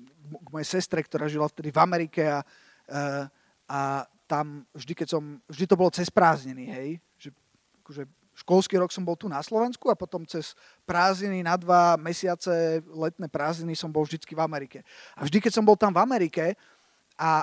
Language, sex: Slovak, male